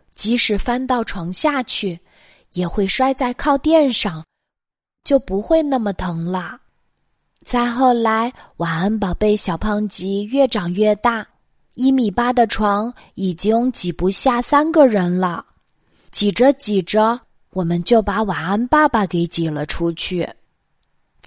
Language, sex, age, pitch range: Chinese, female, 20-39, 185-255 Hz